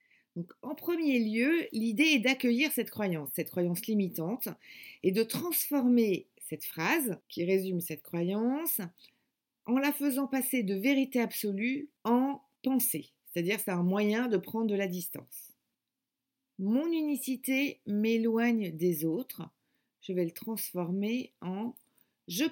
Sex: female